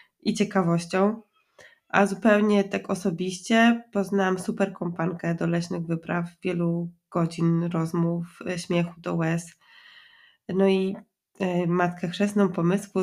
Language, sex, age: Polish, female, 20-39